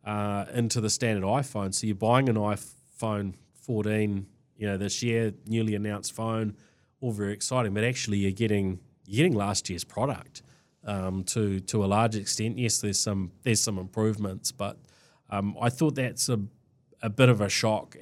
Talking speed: 175 wpm